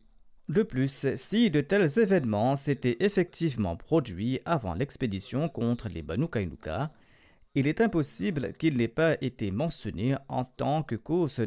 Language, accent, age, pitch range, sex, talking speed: French, French, 40-59, 115-155 Hz, male, 140 wpm